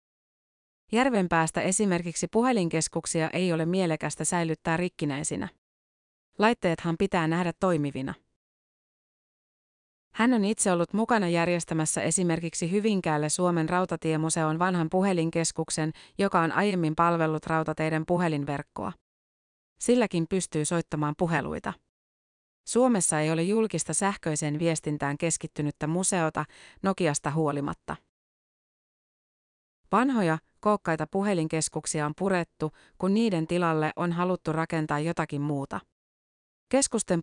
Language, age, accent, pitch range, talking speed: Finnish, 30-49, native, 155-185 Hz, 95 wpm